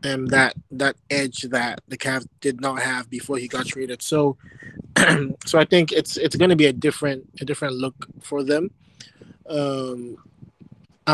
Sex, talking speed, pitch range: male, 165 wpm, 135-150 Hz